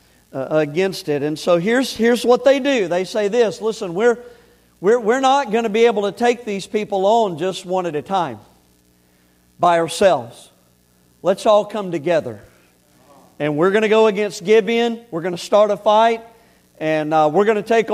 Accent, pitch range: American, 170-225 Hz